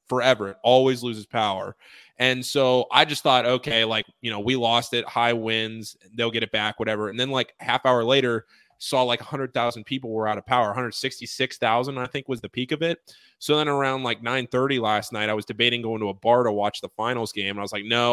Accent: American